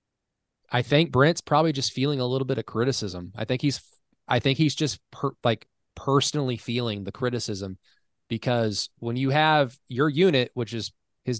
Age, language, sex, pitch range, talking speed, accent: 20-39, English, male, 110-140 Hz, 175 wpm, American